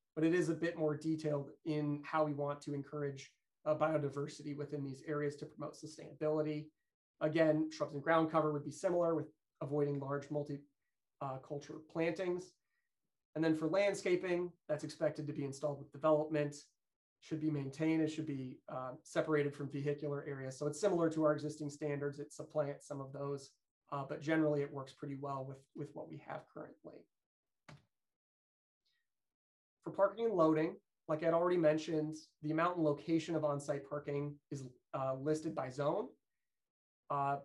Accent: American